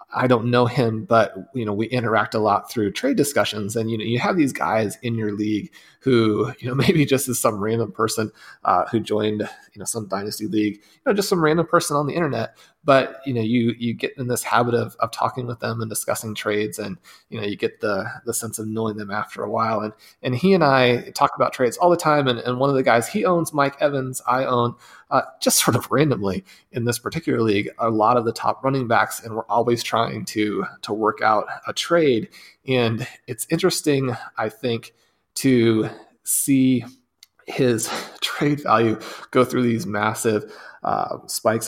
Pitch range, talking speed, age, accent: 110-130 Hz, 210 wpm, 30-49, American